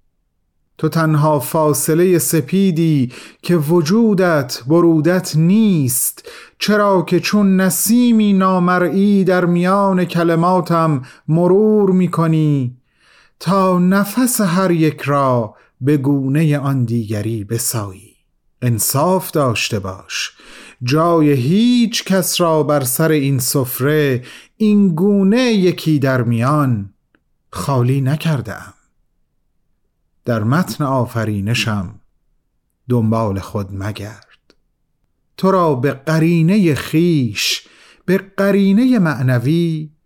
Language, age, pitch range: Persian, 40-59, 125-185 Hz